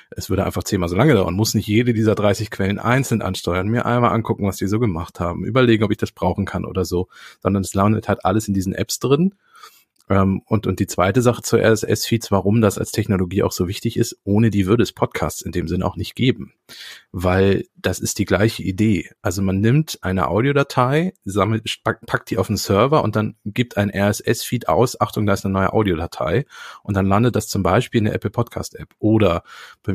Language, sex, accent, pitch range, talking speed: German, male, German, 95-115 Hz, 215 wpm